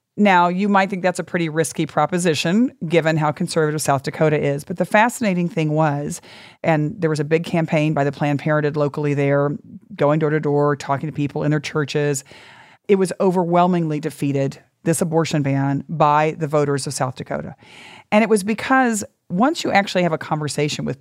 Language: English